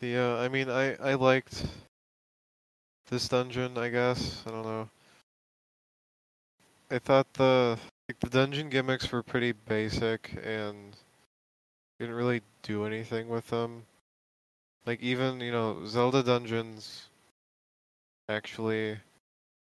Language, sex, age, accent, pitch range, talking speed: English, male, 20-39, American, 105-120 Hz, 110 wpm